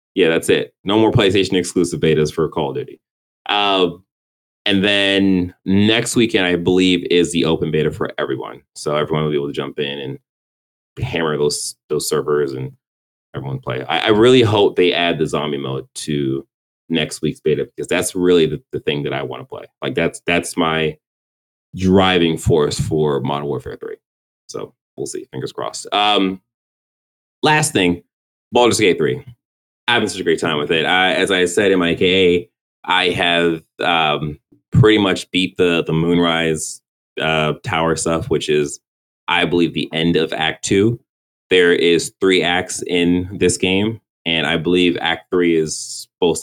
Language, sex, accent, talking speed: English, male, American, 175 wpm